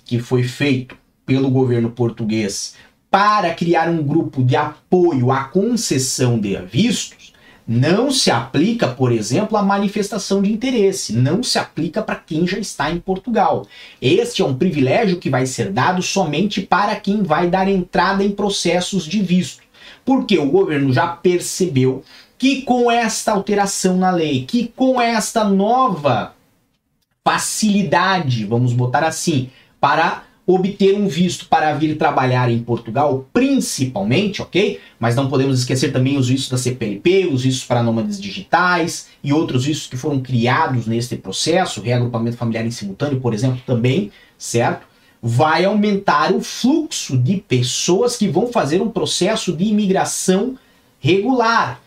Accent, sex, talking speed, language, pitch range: Brazilian, male, 145 wpm, Portuguese, 130-205 Hz